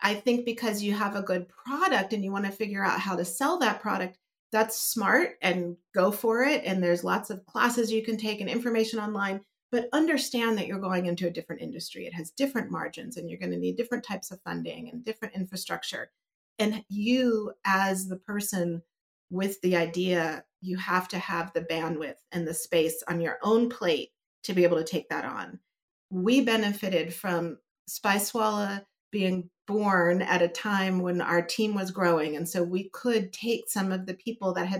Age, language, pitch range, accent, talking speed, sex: 40-59, English, 175-210 Hz, American, 195 wpm, female